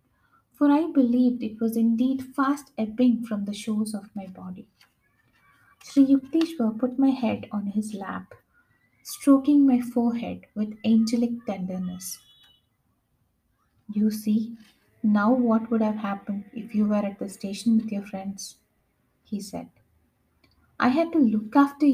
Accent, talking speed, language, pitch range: Indian, 140 wpm, English, 205-260 Hz